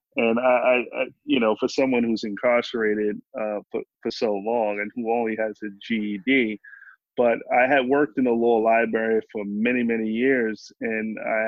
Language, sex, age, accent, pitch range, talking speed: English, male, 20-39, American, 105-125 Hz, 180 wpm